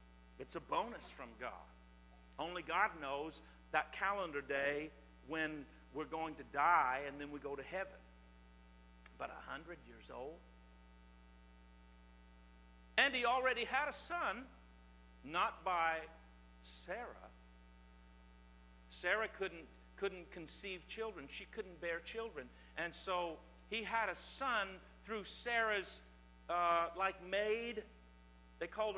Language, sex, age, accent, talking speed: English, male, 50-69, American, 120 wpm